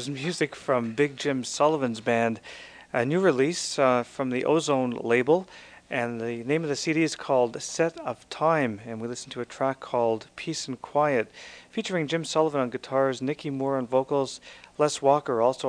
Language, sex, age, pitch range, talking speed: English, male, 40-59, 120-145 Hz, 180 wpm